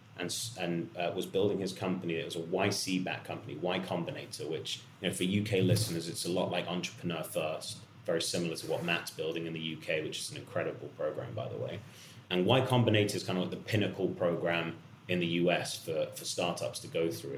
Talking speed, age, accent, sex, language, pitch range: 220 wpm, 30-49, British, male, English, 90-120 Hz